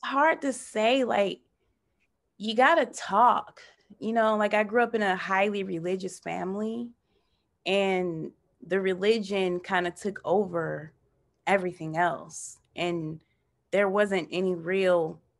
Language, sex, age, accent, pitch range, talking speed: English, female, 20-39, American, 165-200 Hz, 125 wpm